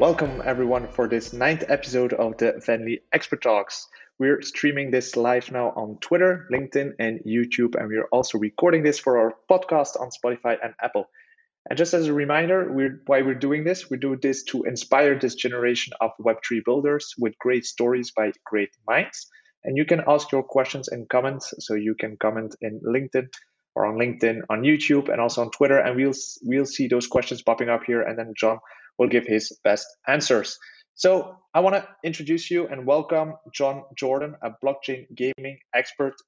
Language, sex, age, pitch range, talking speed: English, male, 30-49, 120-145 Hz, 190 wpm